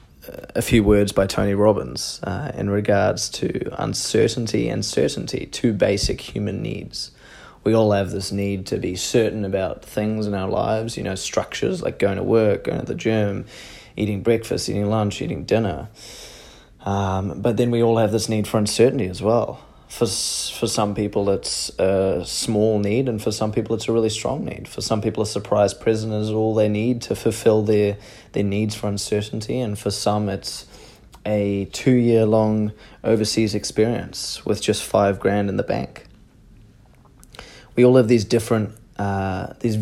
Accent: Australian